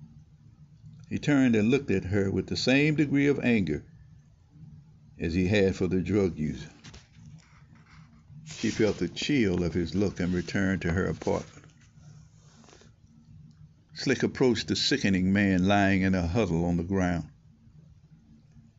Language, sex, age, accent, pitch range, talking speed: English, male, 60-79, American, 90-110 Hz, 135 wpm